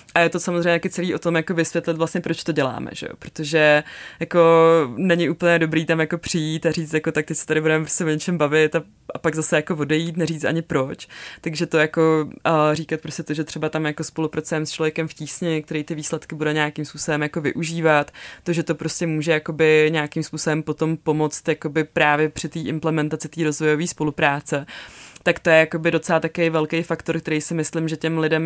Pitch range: 150-165 Hz